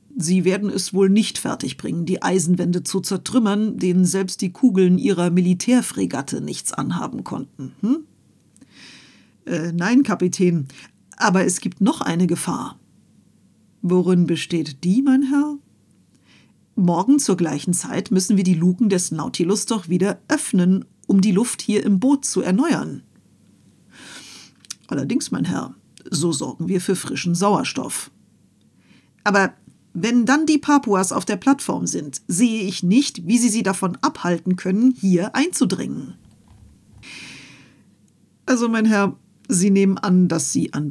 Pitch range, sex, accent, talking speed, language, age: 180-250 Hz, female, German, 135 wpm, German, 50-69